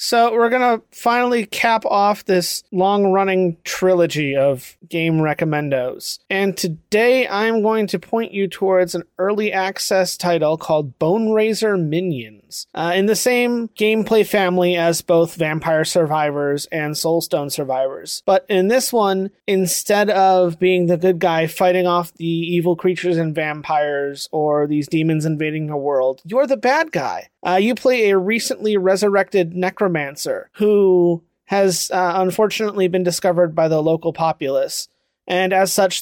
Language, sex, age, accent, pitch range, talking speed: English, male, 30-49, American, 160-200 Hz, 145 wpm